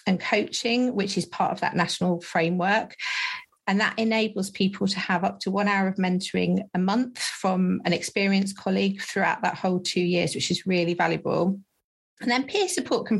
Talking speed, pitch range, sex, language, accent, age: 185 wpm, 185-220 Hz, female, English, British, 40-59